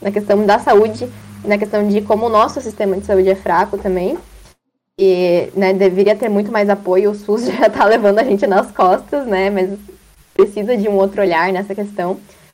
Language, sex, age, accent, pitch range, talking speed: Portuguese, female, 10-29, Brazilian, 195-225 Hz, 195 wpm